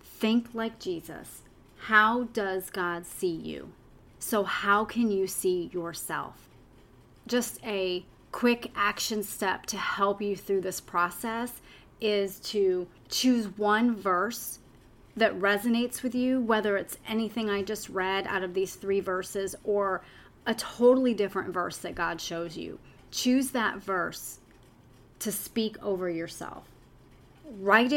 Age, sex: 30-49, female